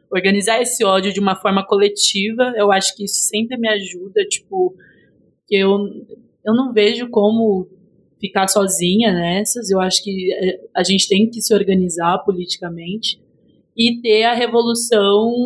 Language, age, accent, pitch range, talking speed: Portuguese, 20-39, Brazilian, 190-235 Hz, 150 wpm